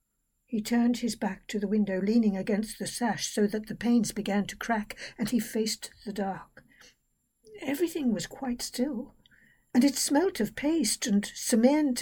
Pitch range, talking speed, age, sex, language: 205-255 Hz, 170 wpm, 60-79, female, English